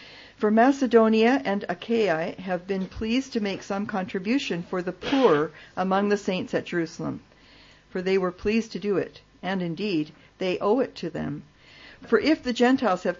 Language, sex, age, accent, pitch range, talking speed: English, female, 50-69, American, 170-215 Hz, 175 wpm